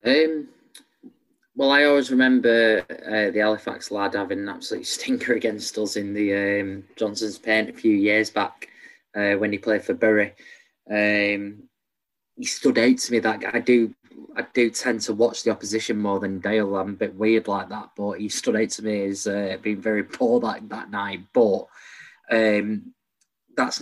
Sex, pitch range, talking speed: male, 100-115 Hz, 180 wpm